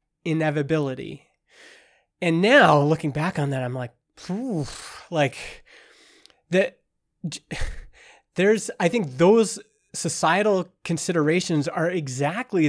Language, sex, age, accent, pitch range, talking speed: English, male, 20-39, American, 145-185 Hz, 90 wpm